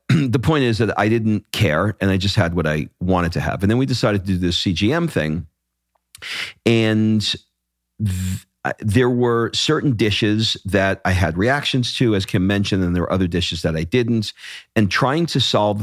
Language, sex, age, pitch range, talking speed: English, male, 40-59, 90-110 Hz, 190 wpm